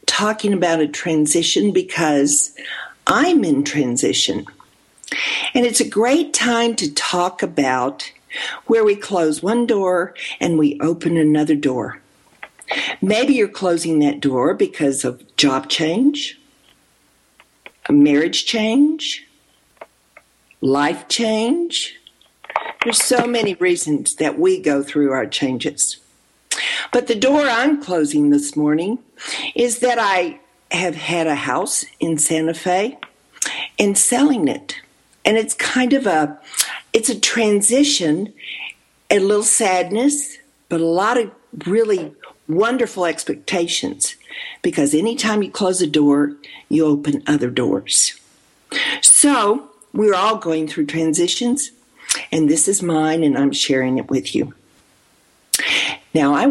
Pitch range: 150-245 Hz